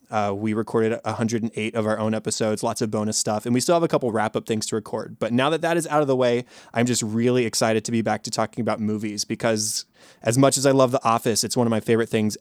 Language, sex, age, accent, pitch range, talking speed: English, male, 20-39, American, 110-130 Hz, 270 wpm